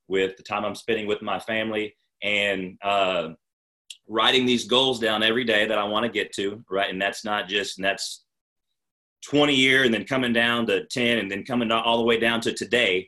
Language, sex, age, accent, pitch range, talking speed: English, male, 30-49, American, 105-125 Hz, 205 wpm